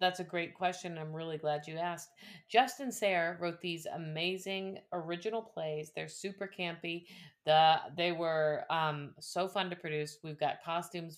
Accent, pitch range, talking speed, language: American, 155-195 Hz, 160 wpm, English